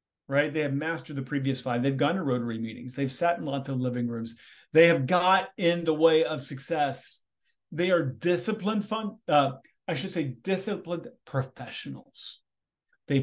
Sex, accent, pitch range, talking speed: male, American, 130-170 Hz, 170 wpm